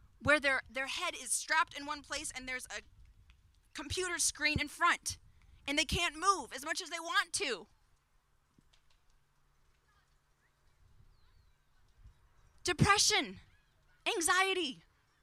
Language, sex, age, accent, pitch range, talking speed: English, female, 20-39, American, 285-355 Hz, 110 wpm